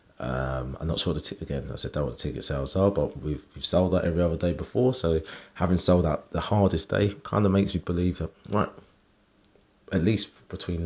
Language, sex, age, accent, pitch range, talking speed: English, male, 30-49, British, 75-95 Hz, 230 wpm